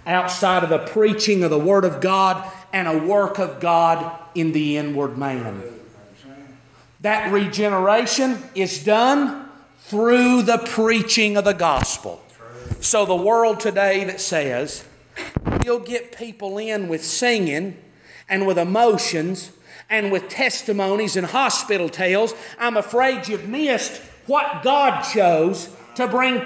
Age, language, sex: 40-59, English, male